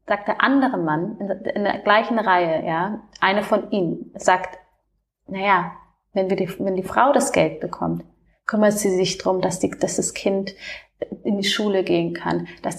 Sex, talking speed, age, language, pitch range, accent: female, 180 wpm, 30-49, German, 185-210 Hz, German